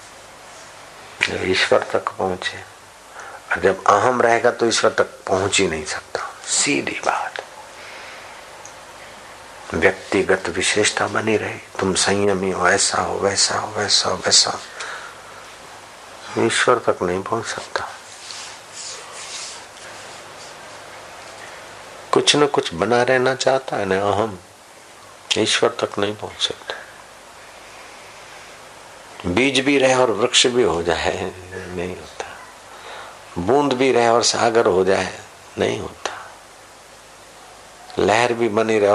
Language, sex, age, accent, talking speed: Hindi, male, 50-69, native, 110 wpm